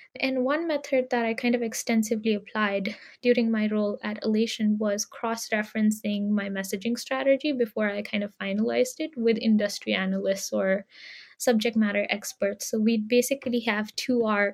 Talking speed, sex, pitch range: 155 wpm, female, 210-245 Hz